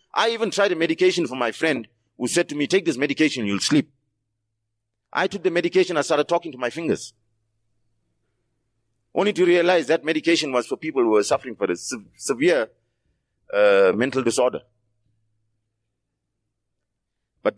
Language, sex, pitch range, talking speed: English, male, 110-170 Hz, 160 wpm